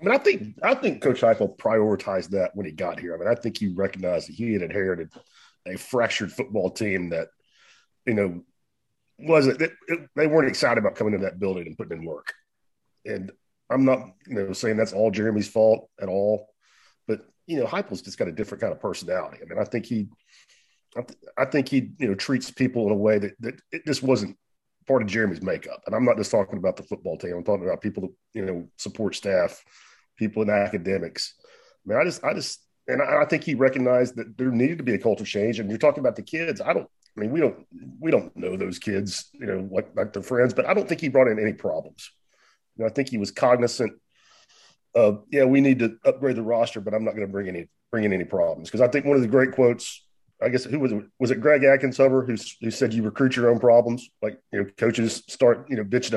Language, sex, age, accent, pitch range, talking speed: English, male, 40-59, American, 105-130 Hz, 240 wpm